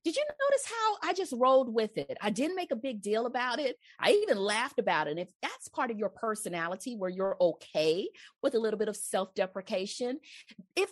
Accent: American